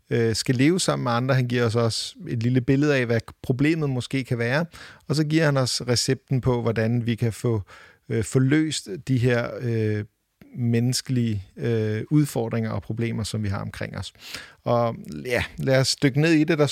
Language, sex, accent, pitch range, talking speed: English, male, Danish, 115-140 Hz, 185 wpm